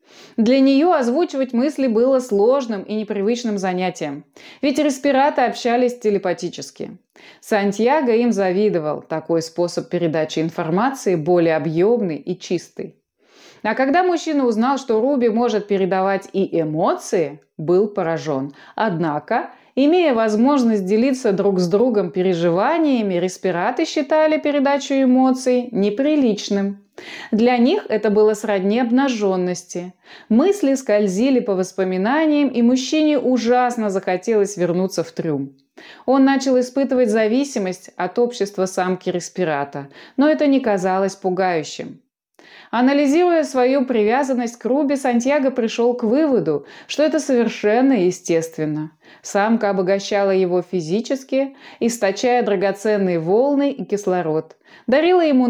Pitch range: 185-260 Hz